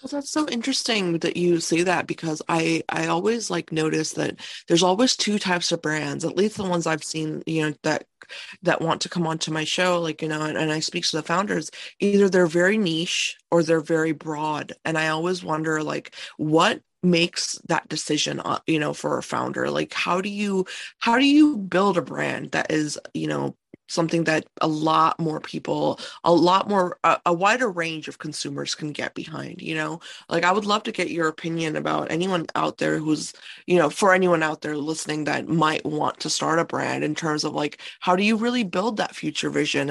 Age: 20-39